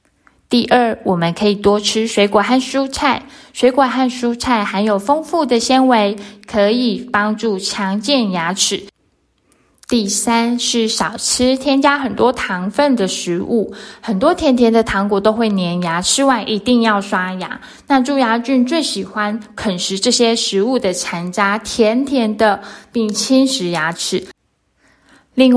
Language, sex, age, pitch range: Chinese, female, 20-39, 200-250 Hz